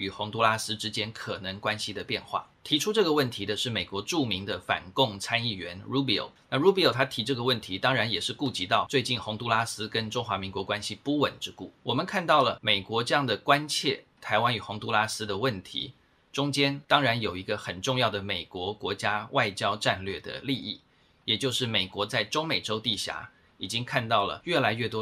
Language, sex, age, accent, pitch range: Chinese, male, 20-39, native, 105-130 Hz